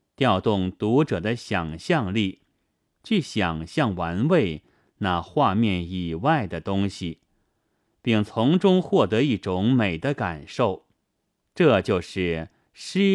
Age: 30-49